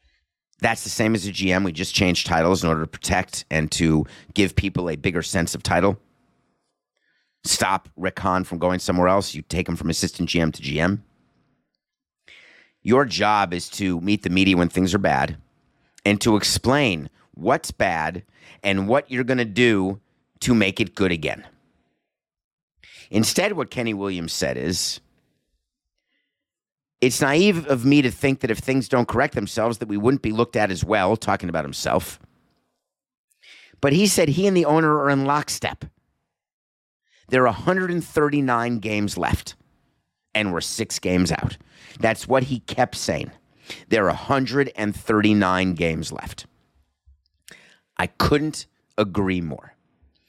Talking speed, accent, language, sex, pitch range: 155 wpm, American, English, male, 85-120 Hz